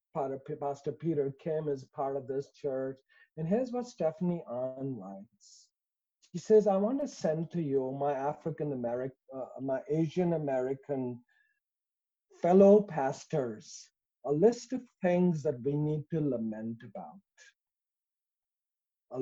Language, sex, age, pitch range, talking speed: English, male, 50-69, 130-170 Hz, 140 wpm